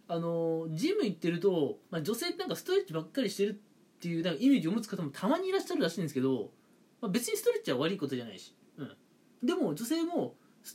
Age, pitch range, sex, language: 20-39, 155-245 Hz, male, Japanese